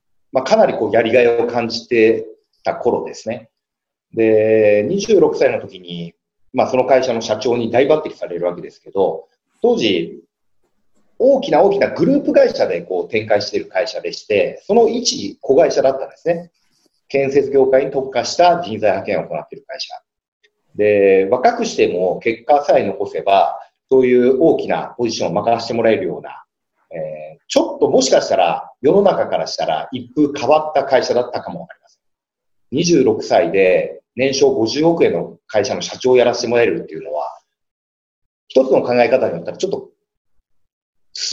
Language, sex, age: Japanese, male, 40-59